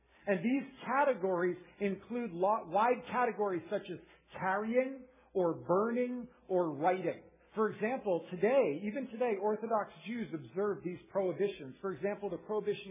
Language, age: English, 50-69